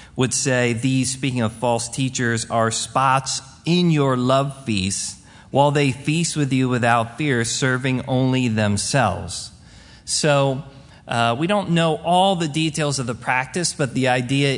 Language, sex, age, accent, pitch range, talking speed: English, male, 30-49, American, 115-150 Hz, 150 wpm